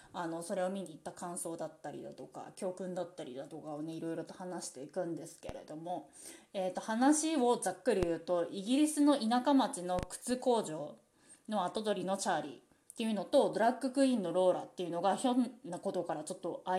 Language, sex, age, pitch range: Japanese, female, 20-39, 180-285 Hz